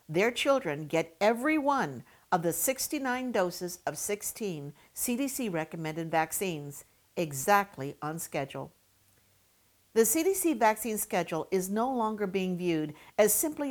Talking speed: 120 wpm